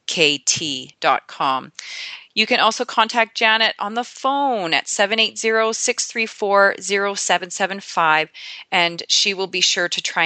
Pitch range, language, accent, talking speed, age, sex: 170-200 Hz, English, American, 100 wpm, 30-49, female